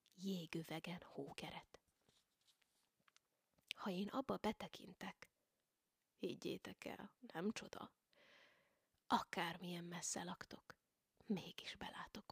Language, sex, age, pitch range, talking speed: Hungarian, female, 30-49, 175-215 Hz, 80 wpm